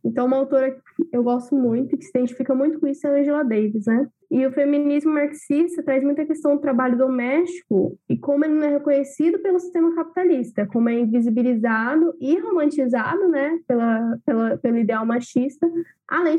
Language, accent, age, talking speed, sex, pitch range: Portuguese, Brazilian, 10-29, 180 wpm, female, 245-295 Hz